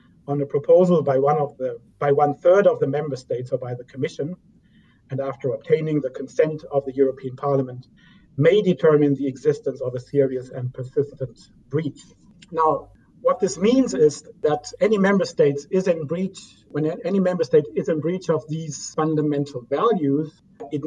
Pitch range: 135-165 Hz